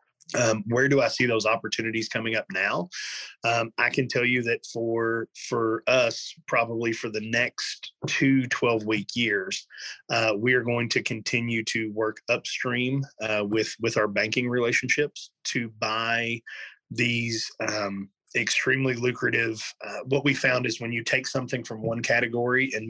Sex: male